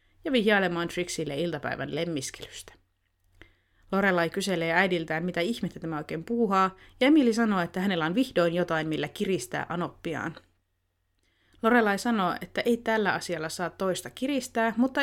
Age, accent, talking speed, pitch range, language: 30-49, native, 135 wpm, 165-215 Hz, Finnish